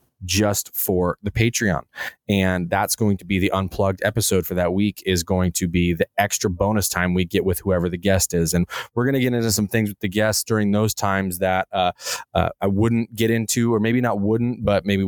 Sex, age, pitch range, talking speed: male, 20-39, 90-105 Hz, 225 wpm